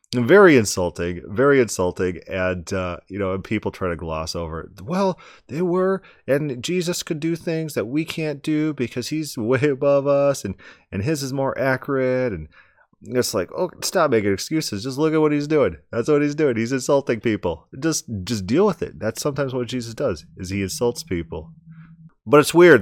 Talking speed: 195 wpm